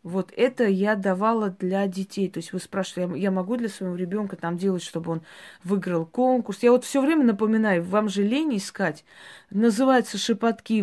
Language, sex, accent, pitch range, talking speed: Russian, female, native, 180-220 Hz, 175 wpm